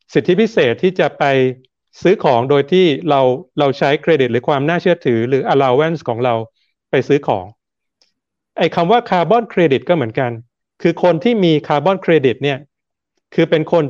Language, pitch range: Thai, 130-170 Hz